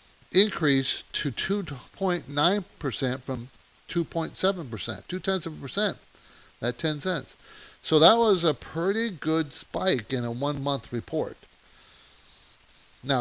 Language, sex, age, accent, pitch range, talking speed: English, male, 50-69, American, 120-165 Hz, 110 wpm